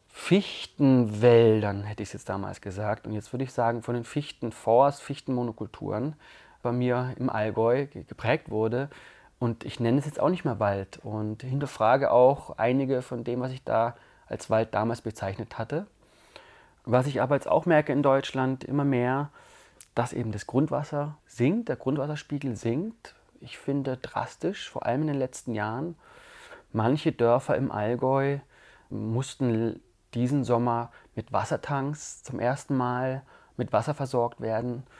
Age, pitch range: 30-49, 110-140 Hz